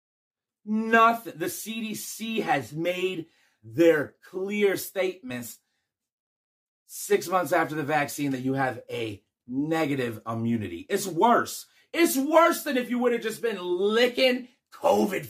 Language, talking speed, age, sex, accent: English, 125 wpm, 30-49, male, American